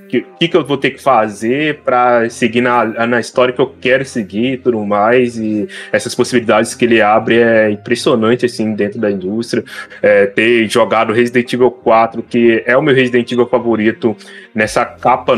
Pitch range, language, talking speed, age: 110-130 Hz, Portuguese, 175 wpm, 20-39